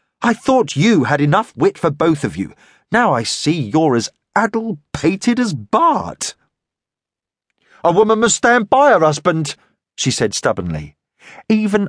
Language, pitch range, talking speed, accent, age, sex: English, 130-210 Hz, 145 wpm, British, 40-59, male